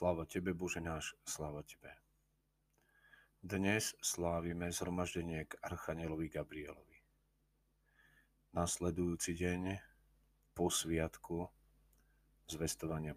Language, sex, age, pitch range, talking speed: Slovak, male, 40-59, 80-100 Hz, 80 wpm